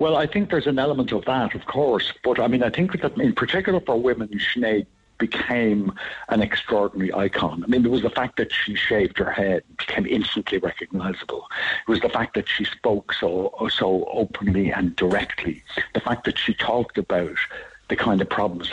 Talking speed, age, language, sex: 195 wpm, 60-79, English, male